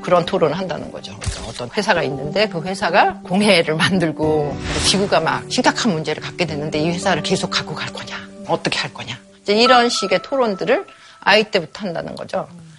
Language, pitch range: Korean, 160-230 Hz